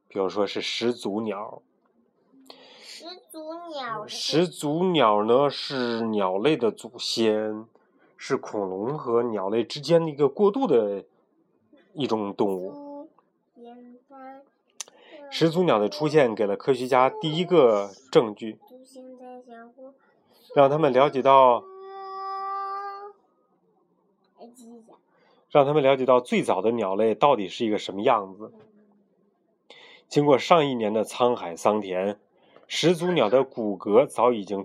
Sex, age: male, 30-49